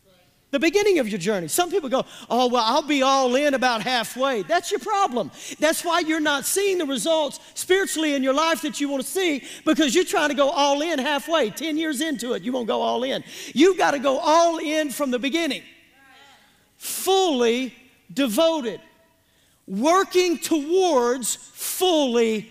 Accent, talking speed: American, 175 wpm